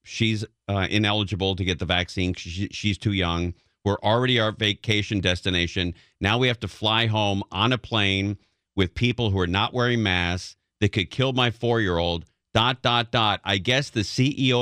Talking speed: 180 wpm